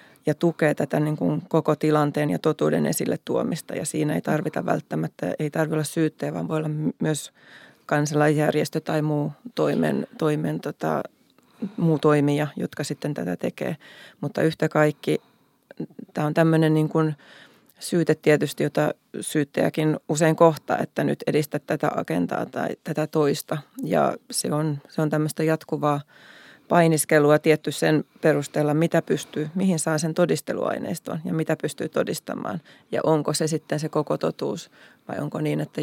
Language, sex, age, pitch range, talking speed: Finnish, female, 20-39, 150-160 Hz, 150 wpm